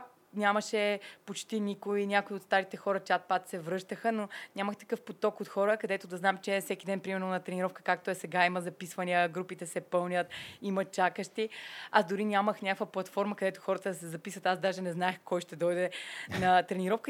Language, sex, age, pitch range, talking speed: Bulgarian, female, 20-39, 185-215 Hz, 195 wpm